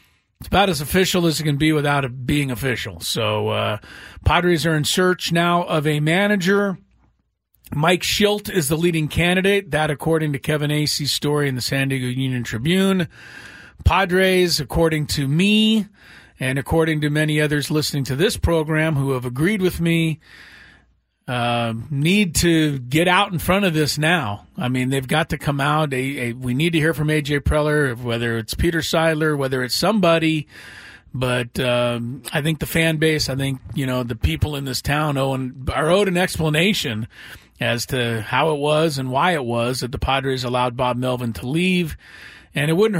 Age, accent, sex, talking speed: 40-59, American, male, 185 wpm